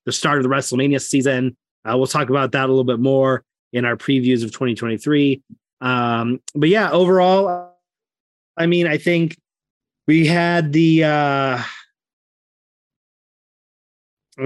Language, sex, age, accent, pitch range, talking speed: English, male, 30-49, American, 130-160 Hz, 135 wpm